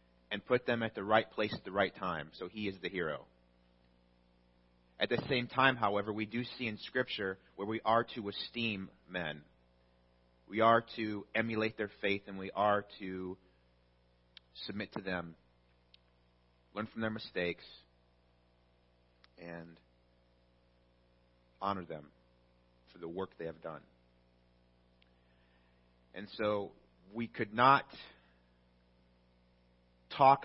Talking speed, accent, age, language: 125 wpm, American, 30-49, English